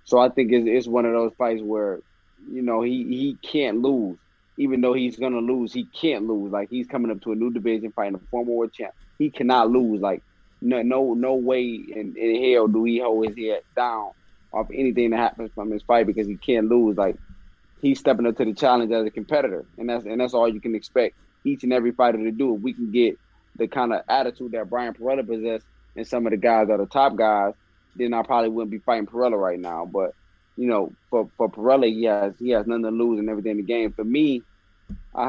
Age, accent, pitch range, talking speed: 20-39, American, 105-125 Hz, 240 wpm